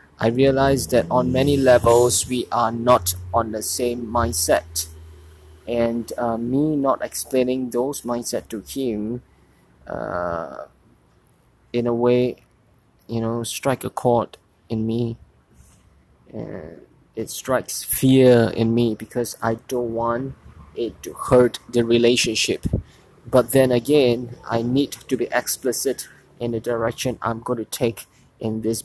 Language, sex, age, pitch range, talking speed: English, male, 20-39, 110-120 Hz, 135 wpm